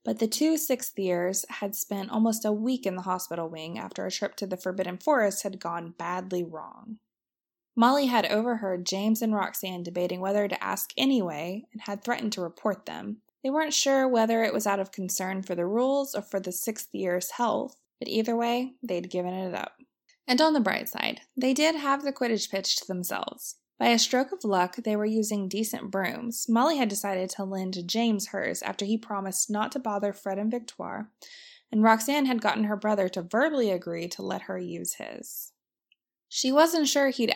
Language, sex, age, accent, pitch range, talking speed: English, female, 20-39, American, 195-245 Hz, 195 wpm